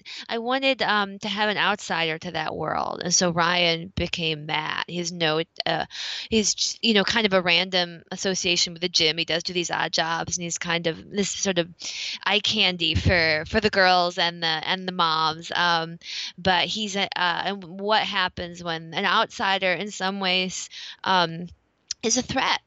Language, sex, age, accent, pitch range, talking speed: English, female, 20-39, American, 170-195 Hz, 190 wpm